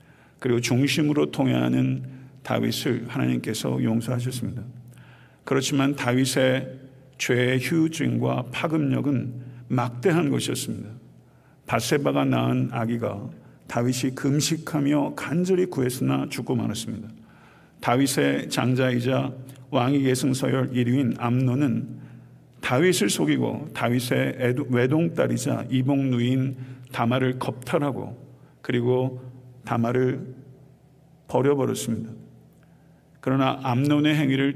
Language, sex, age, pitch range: Korean, male, 50-69, 120-140 Hz